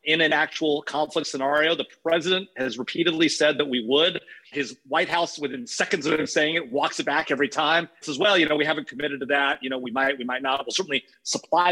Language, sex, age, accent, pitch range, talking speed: English, male, 40-59, American, 140-170 Hz, 235 wpm